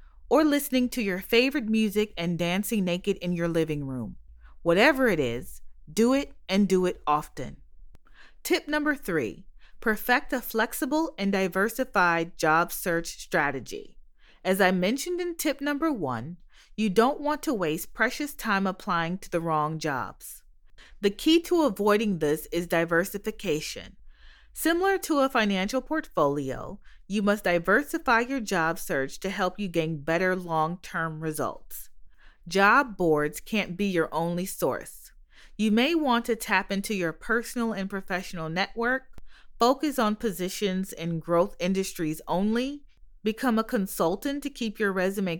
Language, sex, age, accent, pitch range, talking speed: English, female, 30-49, American, 175-250 Hz, 145 wpm